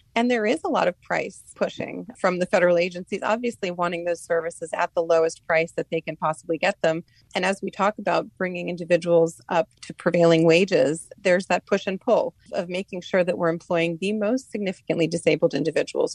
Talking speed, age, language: 195 wpm, 30-49, English